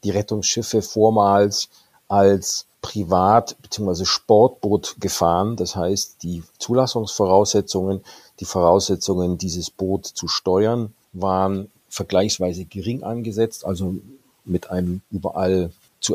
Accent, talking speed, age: German, 100 wpm, 50-69